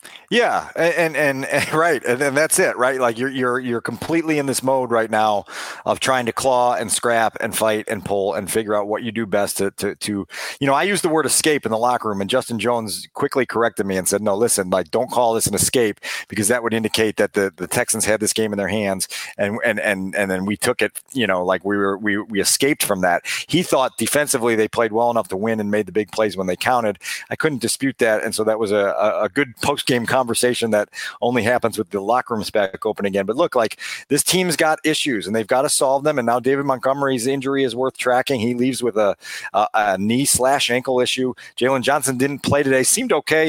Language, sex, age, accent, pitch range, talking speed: English, male, 40-59, American, 110-140 Hz, 245 wpm